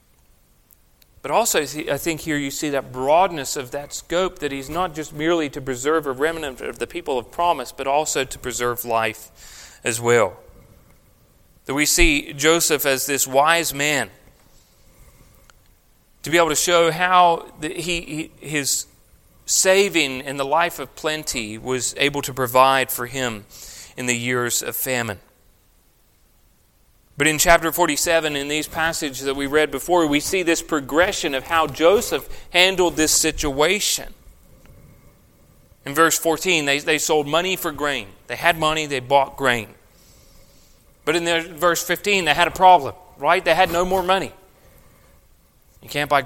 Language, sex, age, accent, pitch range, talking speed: English, male, 40-59, American, 130-165 Hz, 155 wpm